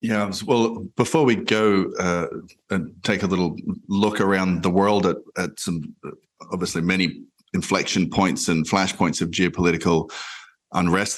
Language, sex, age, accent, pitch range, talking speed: English, male, 30-49, Australian, 85-105 Hz, 140 wpm